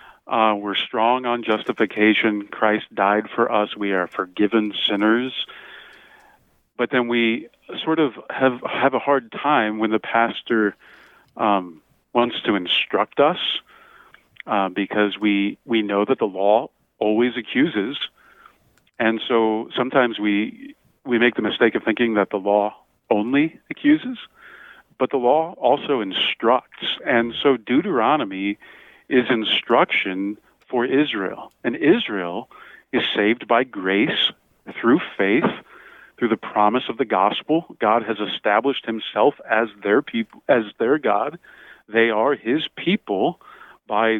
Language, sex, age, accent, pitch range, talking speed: English, male, 40-59, American, 105-125 Hz, 130 wpm